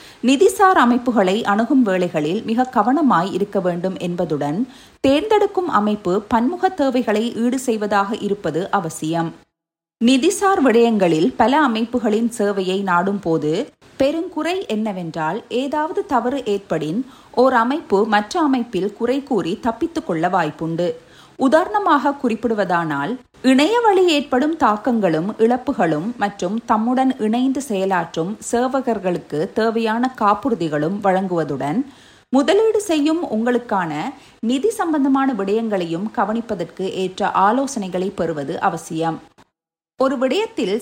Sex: female